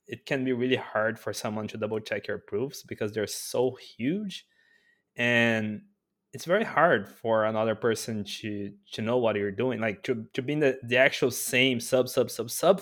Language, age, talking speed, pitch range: English, 20-39, 195 wpm, 100-125 Hz